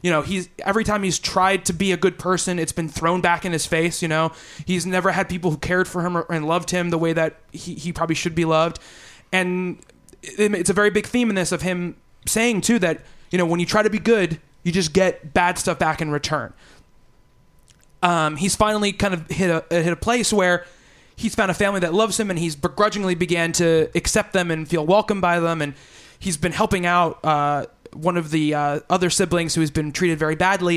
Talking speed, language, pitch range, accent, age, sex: 230 wpm, English, 160-190 Hz, American, 20-39, male